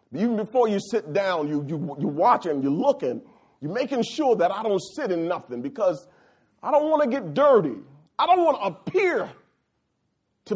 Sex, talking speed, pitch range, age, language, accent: male, 190 wpm, 210-310 Hz, 40-59, English, American